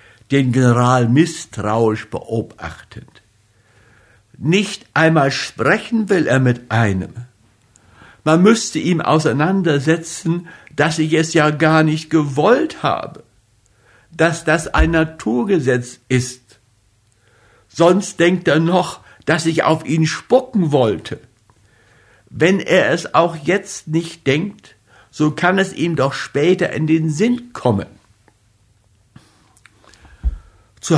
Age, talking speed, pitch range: 60-79, 110 wpm, 110-160 Hz